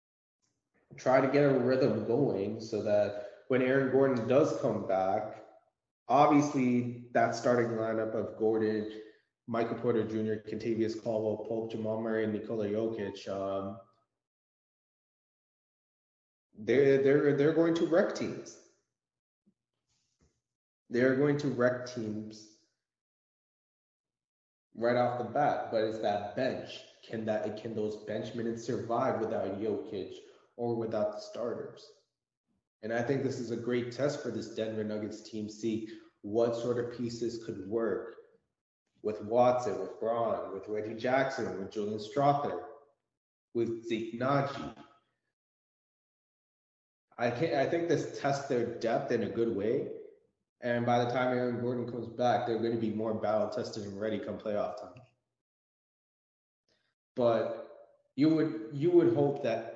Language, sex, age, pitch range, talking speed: English, male, 20-39, 110-135 Hz, 140 wpm